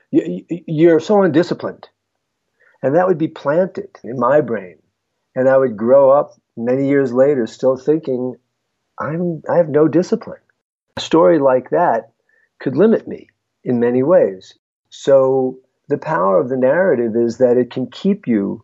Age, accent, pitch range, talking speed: 50-69, American, 120-165 Hz, 150 wpm